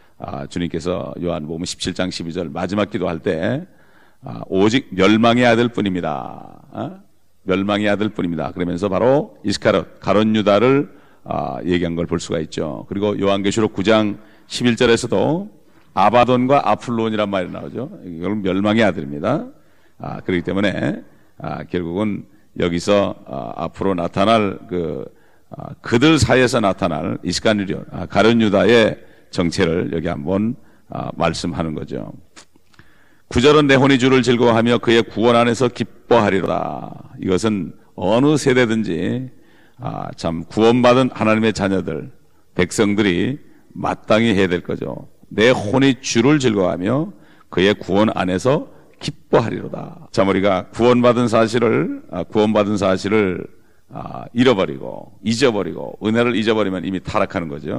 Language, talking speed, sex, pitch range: English, 105 wpm, male, 90-120 Hz